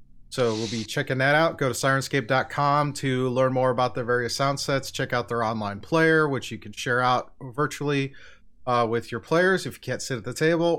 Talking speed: 215 wpm